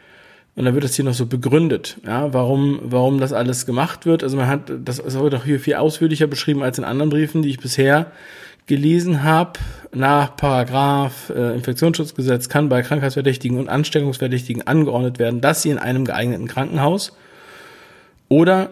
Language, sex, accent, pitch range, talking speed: German, male, German, 125-150 Hz, 165 wpm